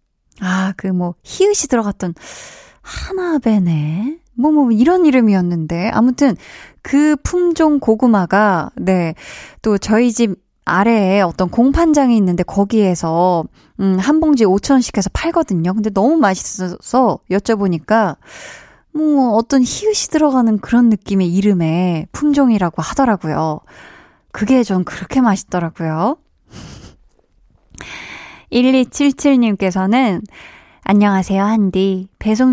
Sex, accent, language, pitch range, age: female, native, Korean, 185-250 Hz, 20-39